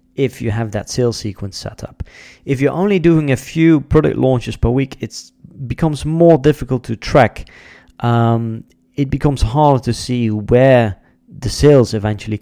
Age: 30-49